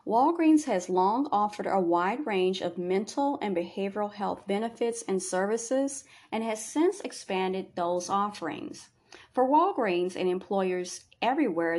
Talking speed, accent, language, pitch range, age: 130 wpm, American, English, 180-250 Hz, 40-59